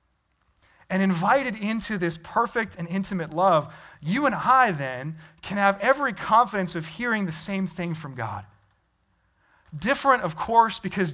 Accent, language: American, English